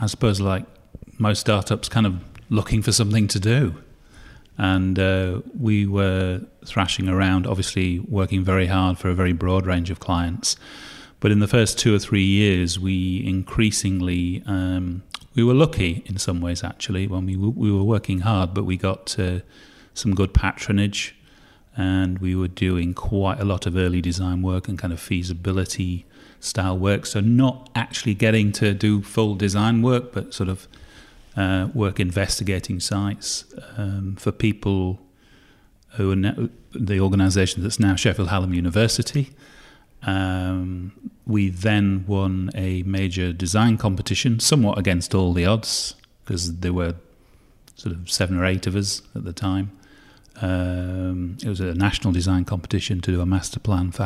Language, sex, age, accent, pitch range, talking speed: English, male, 30-49, British, 95-110 Hz, 160 wpm